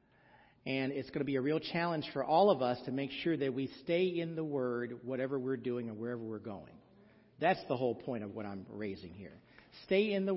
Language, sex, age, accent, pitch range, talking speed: English, male, 50-69, American, 125-175 Hz, 230 wpm